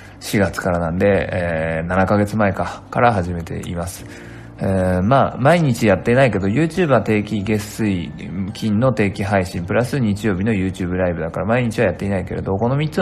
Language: Japanese